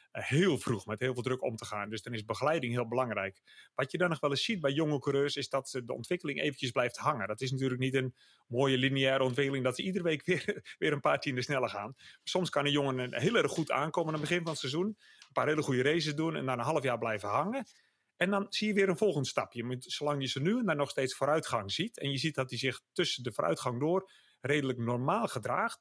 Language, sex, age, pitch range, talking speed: English, male, 40-59, 125-160 Hz, 255 wpm